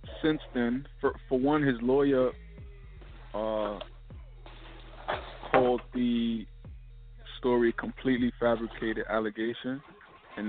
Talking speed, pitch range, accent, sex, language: 85 wpm, 105-120 Hz, American, male, English